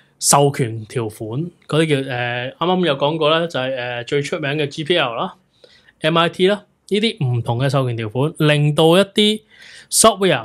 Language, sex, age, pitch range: Chinese, male, 20-39, 130-170 Hz